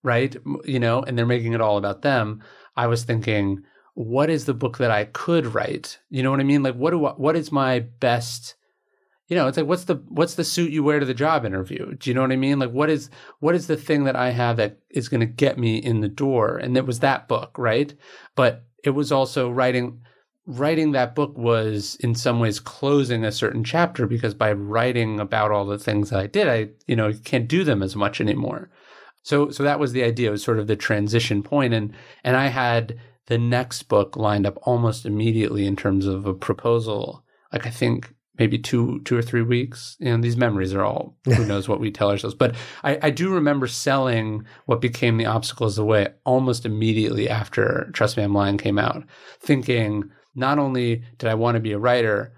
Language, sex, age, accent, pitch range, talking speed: English, male, 30-49, American, 110-135 Hz, 225 wpm